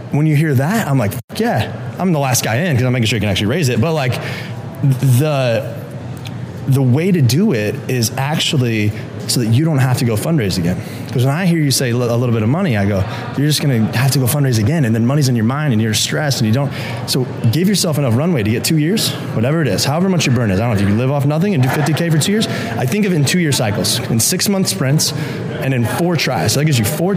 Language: English